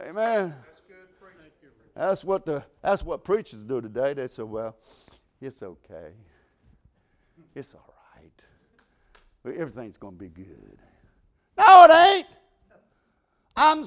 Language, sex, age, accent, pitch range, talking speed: English, male, 60-79, American, 175-270 Hz, 115 wpm